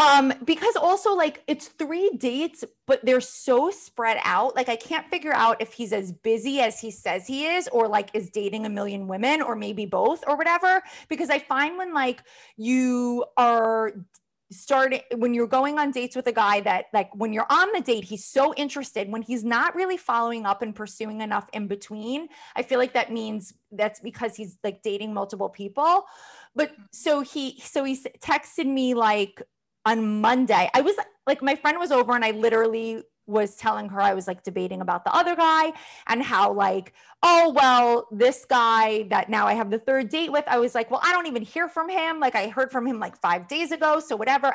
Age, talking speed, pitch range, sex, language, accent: 20-39, 210 wpm, 225-305 Hz, female, English, American